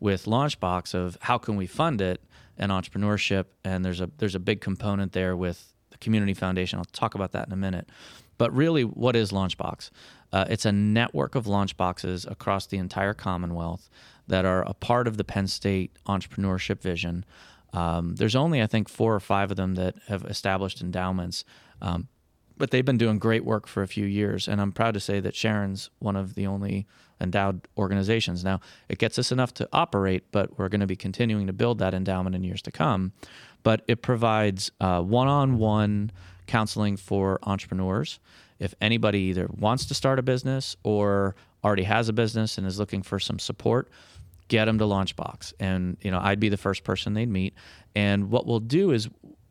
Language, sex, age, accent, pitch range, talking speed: English, male, 30-49, American, 95-110 Hz, 195 wpm